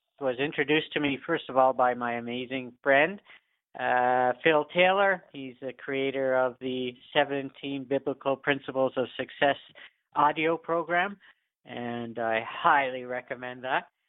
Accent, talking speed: American, 130 wpm